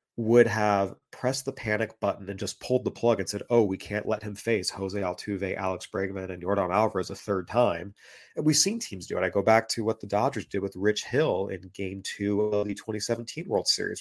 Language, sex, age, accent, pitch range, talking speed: English, male, 30-49, American, 100-120 Hz, 230 wpm